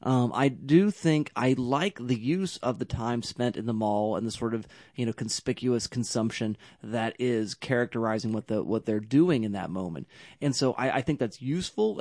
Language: English